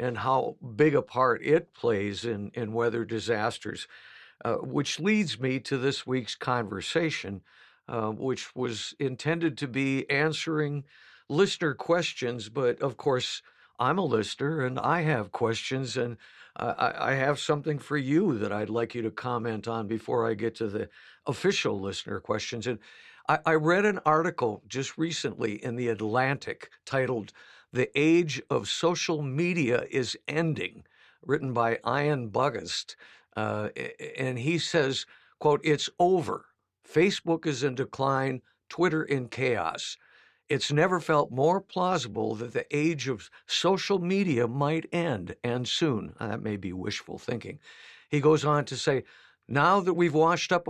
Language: English